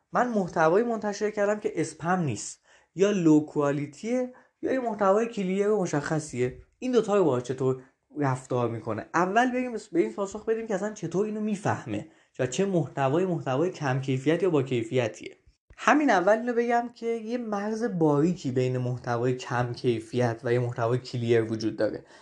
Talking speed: 160 wpm